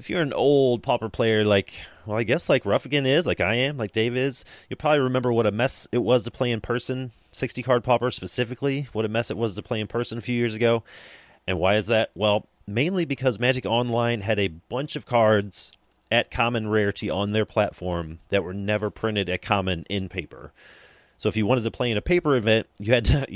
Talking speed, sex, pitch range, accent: 225 wpm, male, 95-115 Hz, American